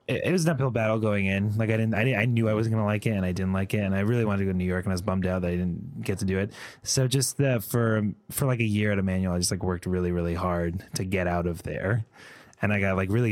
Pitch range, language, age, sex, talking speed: 95-115 Hz, English, 20-39, male, 330 wpm